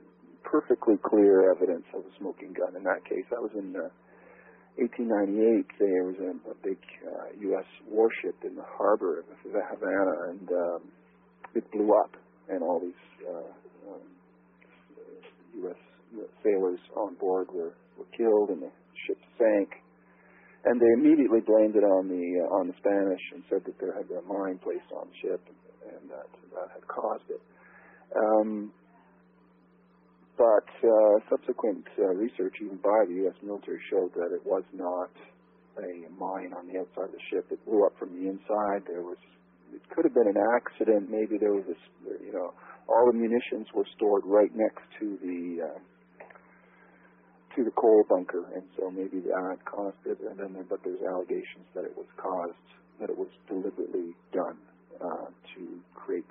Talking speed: 170 wpm